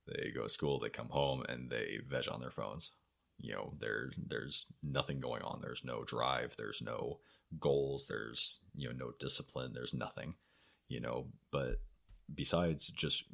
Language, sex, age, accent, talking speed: English, male, 30-49, American, 170 wpm